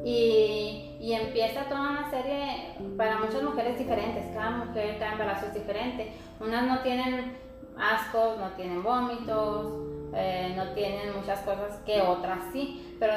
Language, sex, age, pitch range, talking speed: Spanish, female, 20-39, 195-230 Hz, 145 wpm